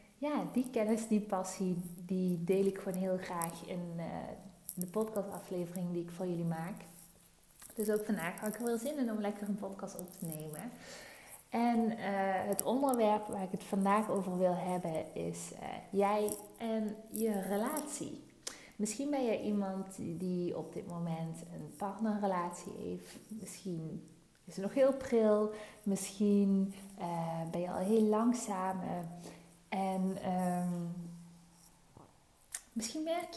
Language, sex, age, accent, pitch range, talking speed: Dutch, female, 30-49, Dutch, 175-215 Hz, 145 wpm